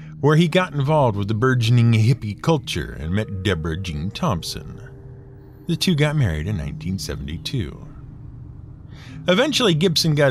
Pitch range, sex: 105-150 Hz, male